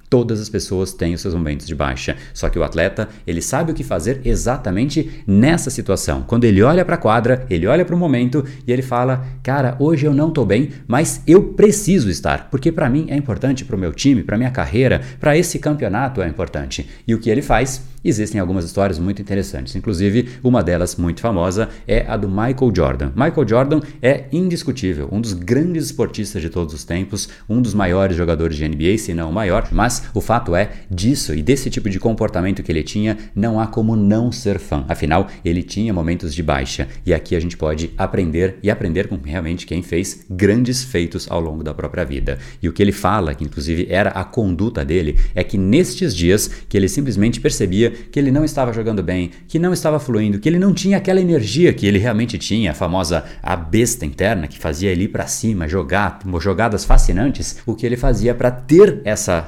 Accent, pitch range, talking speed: Brazilian, 90-125 Hz, 210 wpm